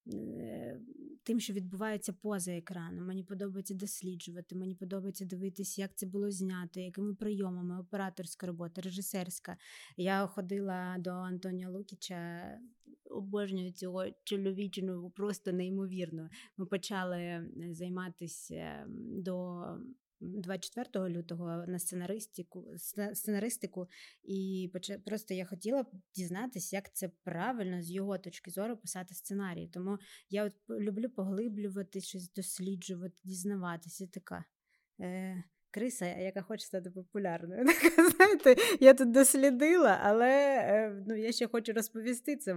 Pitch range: 180-205 Hz